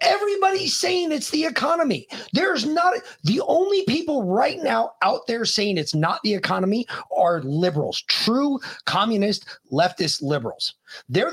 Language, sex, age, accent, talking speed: English, male, 30-49, American, 140 wpm